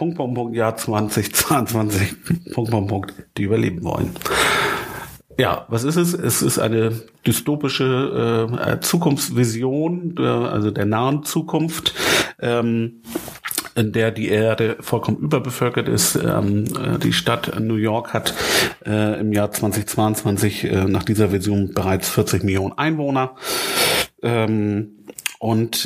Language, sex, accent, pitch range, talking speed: German, male, German, 100-115 Hz, 110 wpm